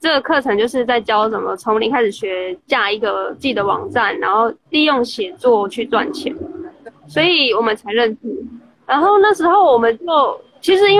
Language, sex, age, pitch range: Chinese, female, 20-39, 230-320 Hz